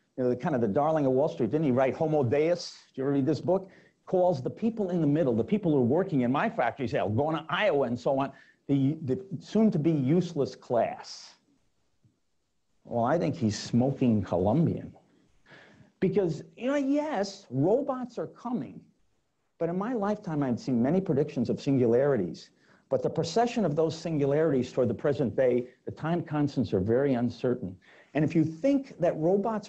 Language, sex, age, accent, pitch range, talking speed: English, male, 50-69, American, 140-195 Hz, 185 wpm